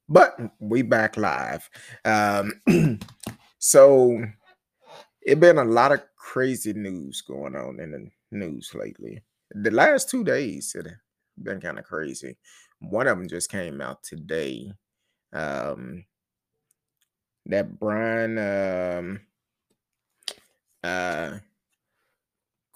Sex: male